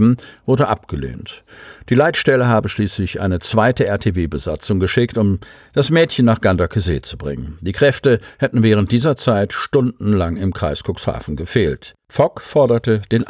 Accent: German